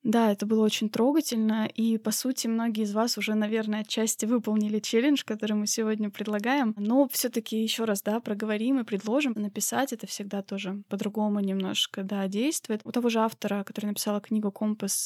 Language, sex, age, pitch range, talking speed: Russian, female, 20-39, 205-245 Hz, 180 wpm